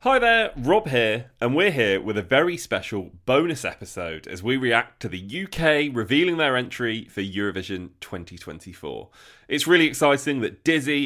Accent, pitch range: British, 95-140 Hz